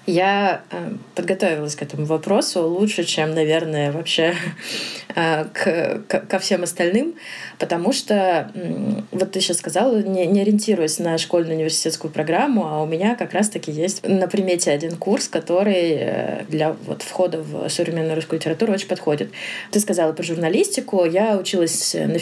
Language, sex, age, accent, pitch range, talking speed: Russian, female, 20-39, native, 160-200 Hz, 150 wpm